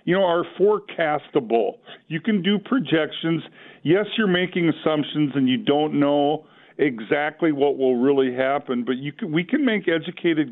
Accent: American